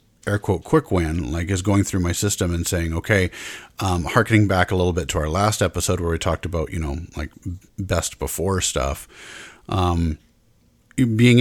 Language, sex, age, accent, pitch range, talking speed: English, male, 40-59, American, 85-110 Hz, 185 wpm